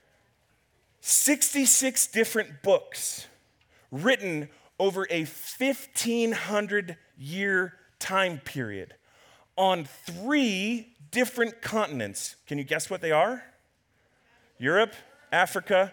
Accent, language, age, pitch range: American, English, 30-49, 170-240 Hz